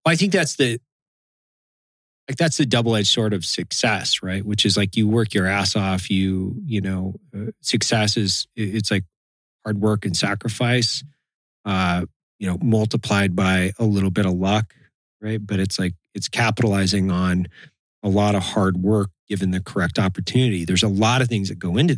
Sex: male